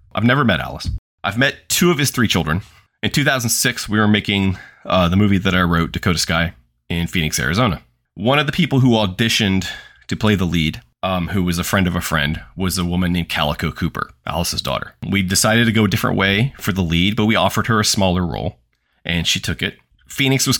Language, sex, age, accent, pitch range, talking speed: English, male, 30-49, American, 85-110 Hz, 220 wpm